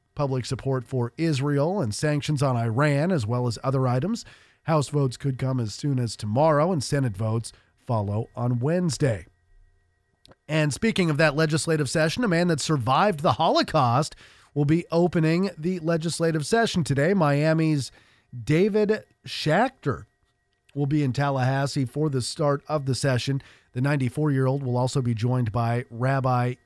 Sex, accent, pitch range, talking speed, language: male, American, 125-165 Hz, 150 wpm, English